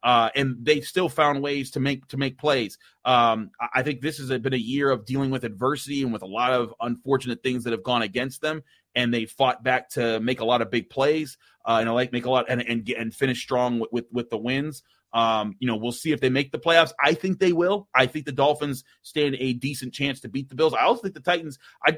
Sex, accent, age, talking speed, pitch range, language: male, American, 30-49, 260 wpm, 120-150 Hz, English